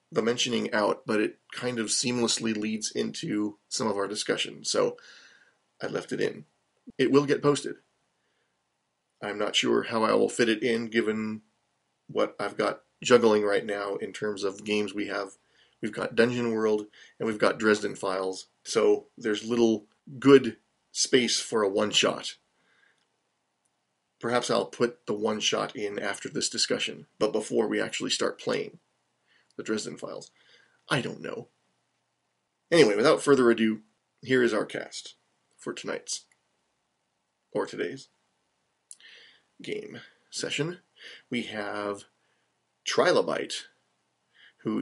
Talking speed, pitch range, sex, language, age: 140 wpm, 105-125 Hz, male, English, 30-49